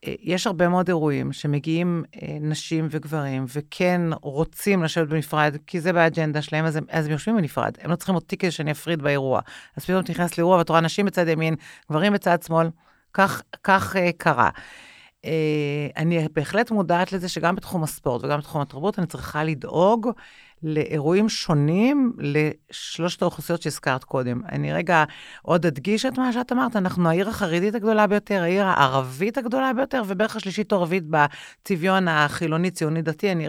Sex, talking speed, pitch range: female, 160 wpm, 150-185 Hz